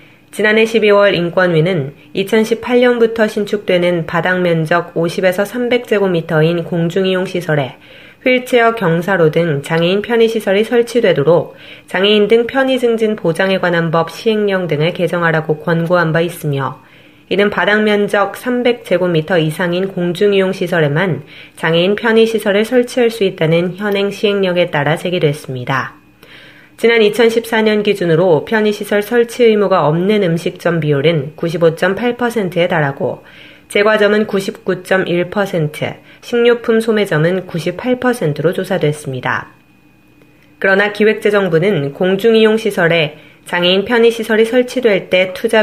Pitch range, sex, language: 165-215 Hz, female, Korean